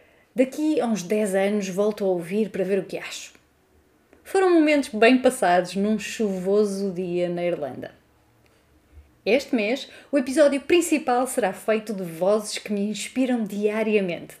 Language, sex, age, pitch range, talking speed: Portuguese, female, 30-49, 195-260 Hz, 145 wpm